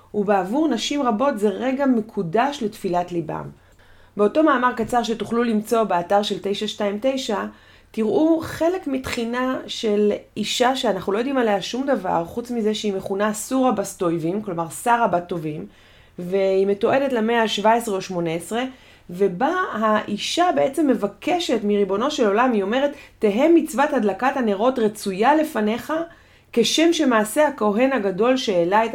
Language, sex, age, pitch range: Hebrew, female, 30-49, 180-245 Hz